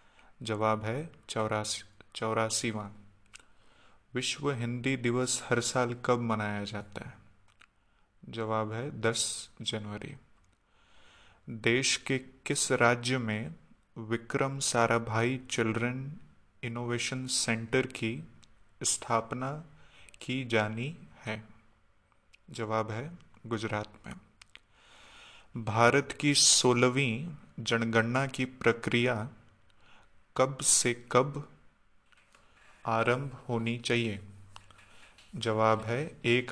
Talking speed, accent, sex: 85 wpm, native, male